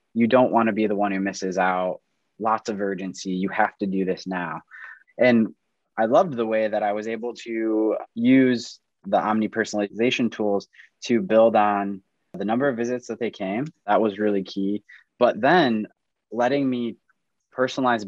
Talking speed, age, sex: 175 wpm, 20-39, male